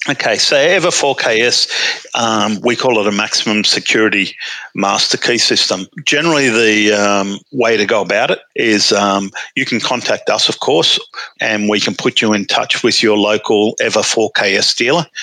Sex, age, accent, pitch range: male, 50-69, Australian, 105-120 Hz